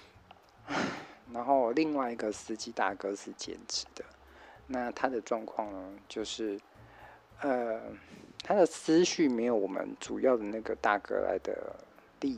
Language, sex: Chinese, male